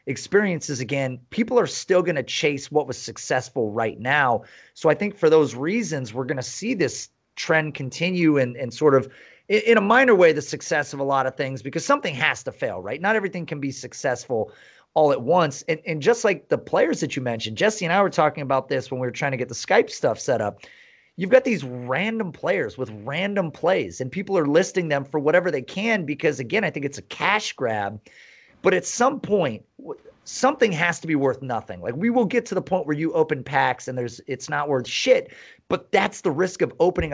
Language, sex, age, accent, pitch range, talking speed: English, male, 30-49, American, 135-190 Hz, 225 wpm